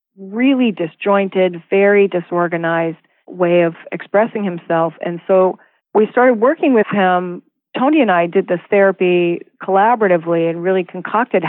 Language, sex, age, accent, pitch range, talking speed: English, female, 40-59, American, 170-210 Hz, 130 wpm